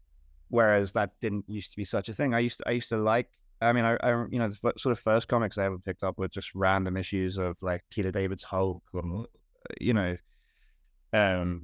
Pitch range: 95-110 Hz